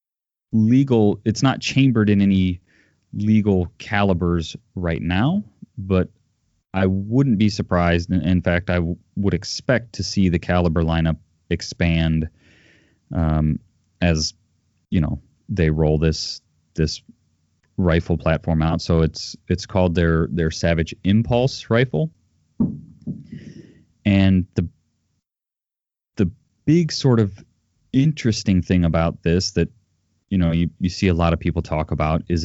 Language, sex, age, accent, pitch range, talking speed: English, male, 30-49, American, 85-105 Hz, 130 wpm